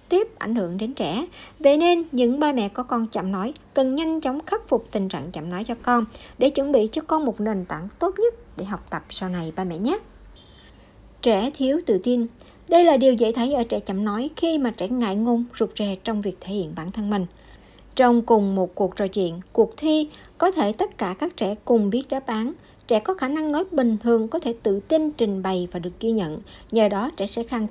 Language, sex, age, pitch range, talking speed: Vietnamese, male, 60-79, 205-295 Hz, 240 wpm